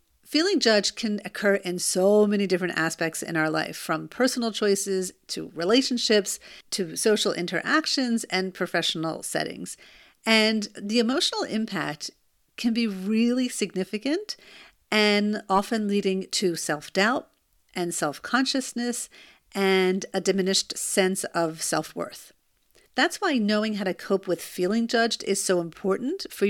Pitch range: 180-235 Hz